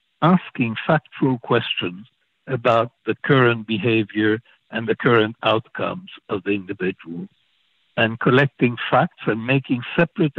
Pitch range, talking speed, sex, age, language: 110-140 Hz, 115 wpm, male, 60-79, English